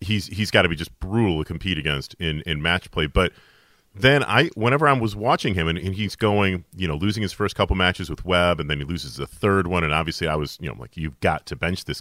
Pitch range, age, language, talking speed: 90-110 Hz, 30-49, English, 270 wpm